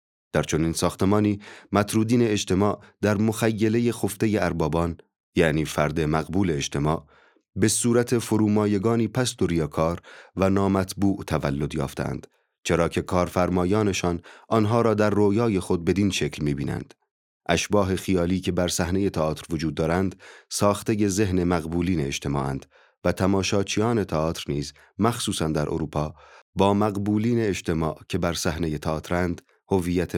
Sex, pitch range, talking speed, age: male, 85-105 Hz, 120 wpm, 30-49